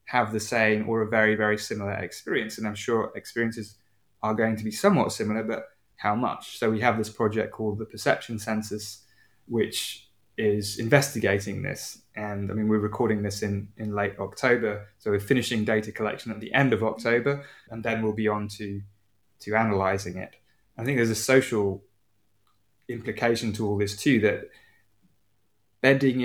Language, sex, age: English, male, 20-39